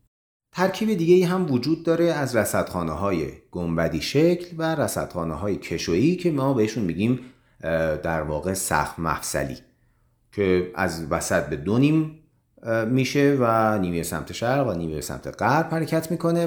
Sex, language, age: male, Persian, 40-59